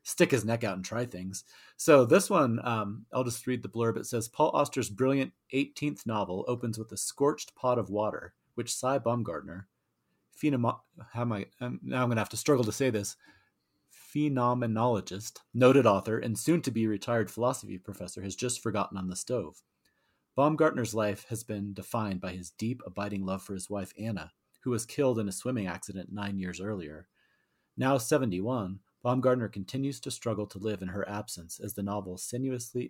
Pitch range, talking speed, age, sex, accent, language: 100-120 Hz, 185 wpm, 30-49, male, American, English